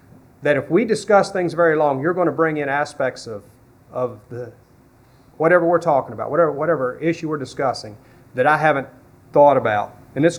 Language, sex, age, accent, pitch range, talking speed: English, male, 40-59, American, 125-155 Hz, 185 wpm